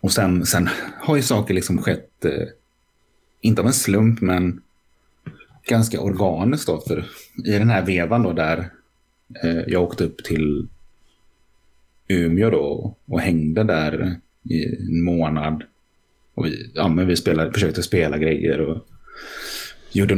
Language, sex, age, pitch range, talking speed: Swedish, male, 30-49, 80-100 Hz, 135 wpm